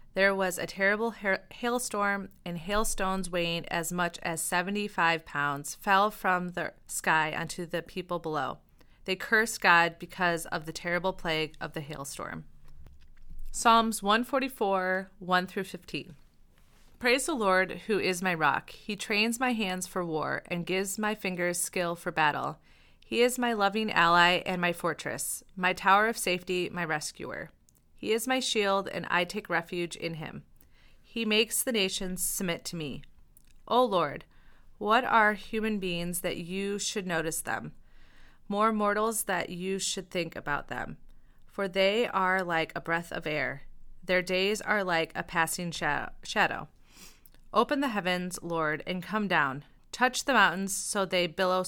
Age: 30-49